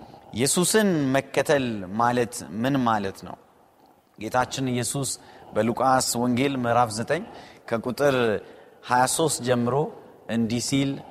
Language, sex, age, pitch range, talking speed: Amharic, male, 30-49, 120-175 Hz, 85 wpm